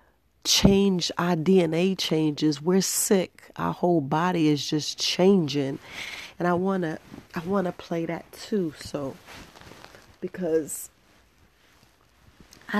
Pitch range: 150-180 Hz